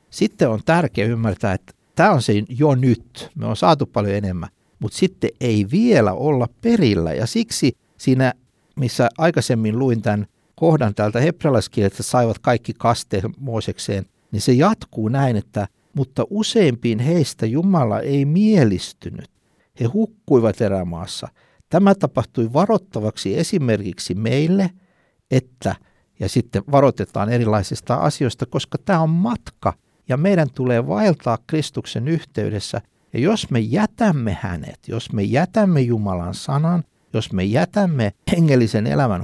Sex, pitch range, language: male, 110-155 Hz, Finnish